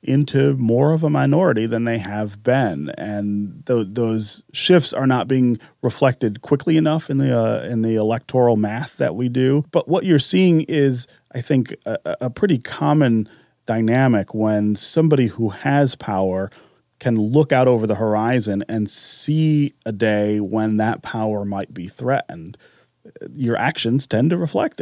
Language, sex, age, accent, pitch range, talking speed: English, male, 30-49, American, 105-135 Hz, 160 wpm